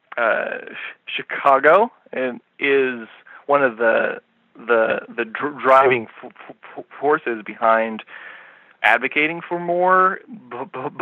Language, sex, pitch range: English, male, 130-170 Hz